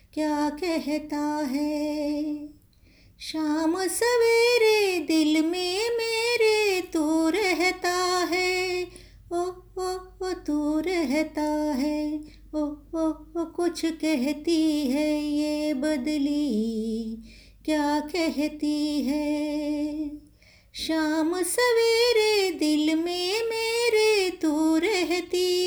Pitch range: 295-360 Hz